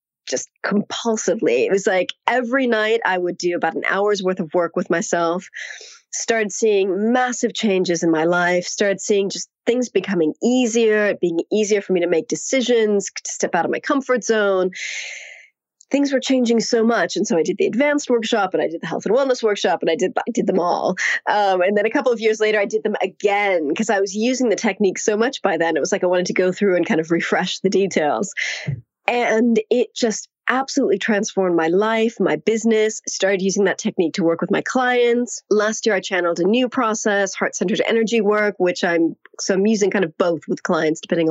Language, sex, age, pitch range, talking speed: English, female, 30-49, 185-235 Hz, 215 wpm